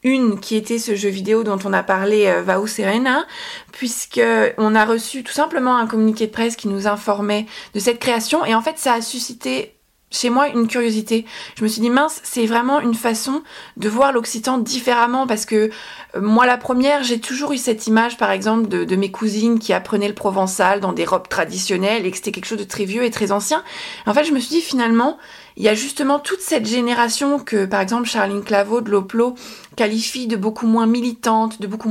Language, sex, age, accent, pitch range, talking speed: French, female, 20-39, French, 215-270 Hz, 220 wpm